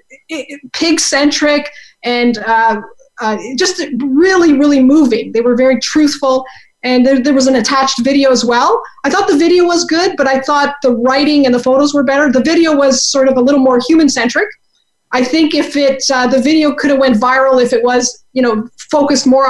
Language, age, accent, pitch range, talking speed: English, 30-49, American, 245-300 Hz, 205 wpm